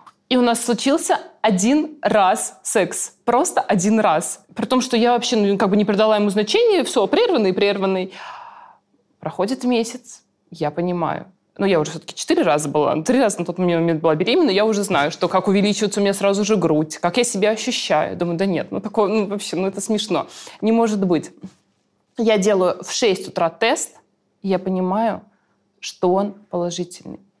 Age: 20-39